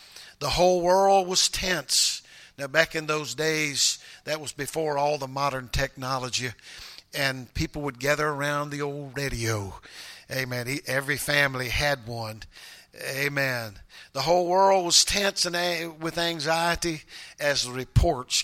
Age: 50-69